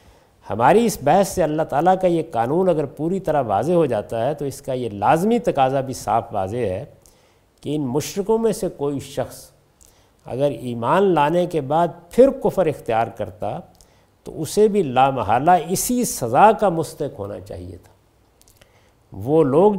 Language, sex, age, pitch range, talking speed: Urdu, male, 50-69, 125-190 Hz, 165 wpm